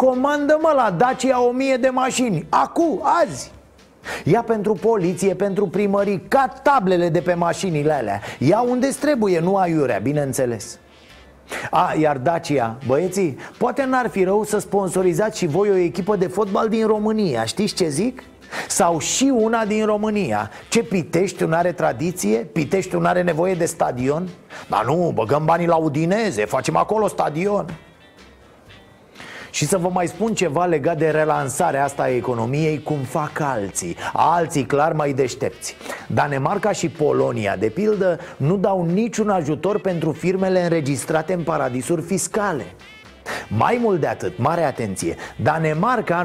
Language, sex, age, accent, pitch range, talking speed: Romanian, male, 30-49, native, 155-210 Hz, 145 wpm